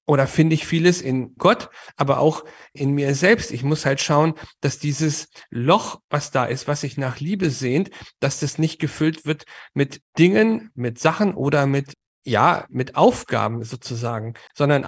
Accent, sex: German, male